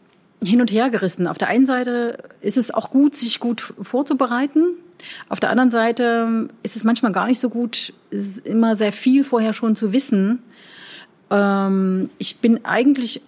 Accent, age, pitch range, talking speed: German, 40-59, 180-235 Hz, 165 wpm